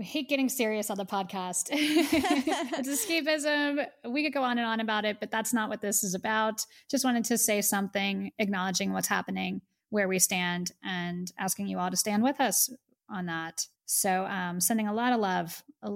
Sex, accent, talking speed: female, American, 200 wpm